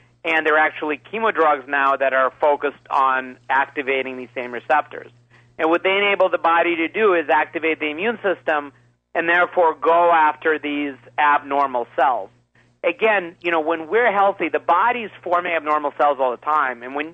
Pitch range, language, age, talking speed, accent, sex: 135-165 Hz, English, 40-59, 175 wpm, American, male